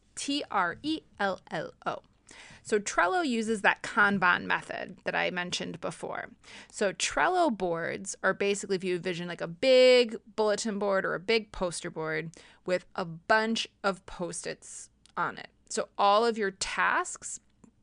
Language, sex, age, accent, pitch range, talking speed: English, female, 20-39, American, 180-225 Hz, 160 wpm